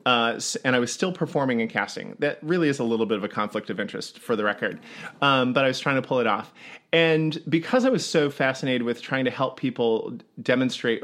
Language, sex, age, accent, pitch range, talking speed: English, male, 30-49, American, 115-145 Hz, 235 wpm